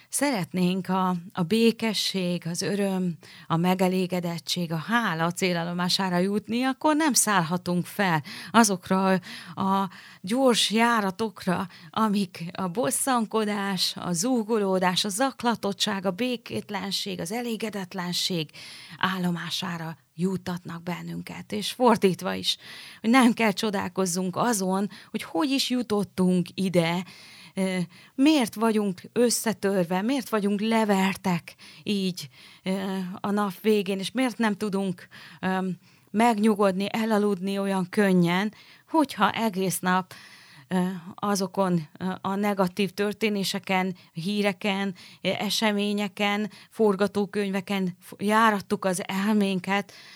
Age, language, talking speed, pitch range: 30-49, Hungarian, 95 wpm, 180-215 Hz